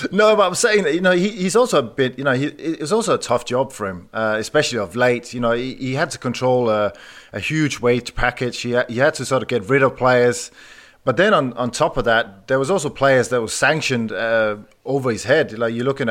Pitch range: 115-140 Hz